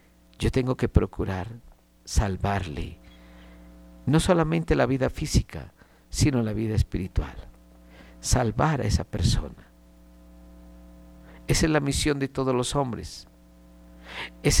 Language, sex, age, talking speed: Spanish, male, 50-69, 110 wpm